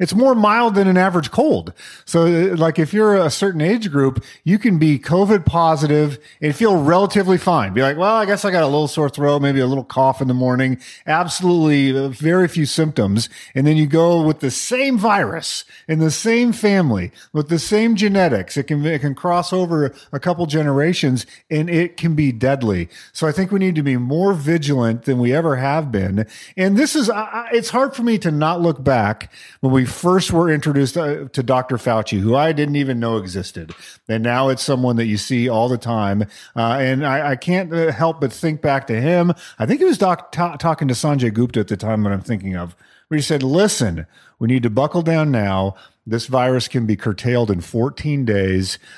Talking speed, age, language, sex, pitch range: 210 wpm, 40-59, English, male, 125-175 Hz